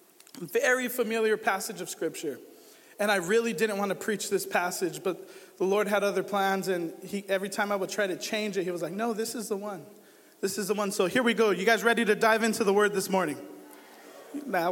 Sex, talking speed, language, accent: male, 230 wpm, English, American